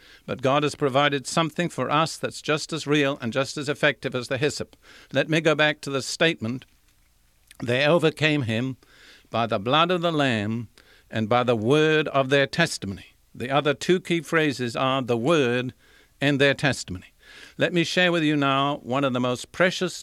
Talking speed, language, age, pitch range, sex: 190 wpm, English, 60-79, 125-165 Hz, male